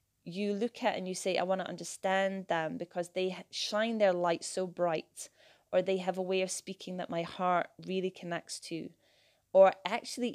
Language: English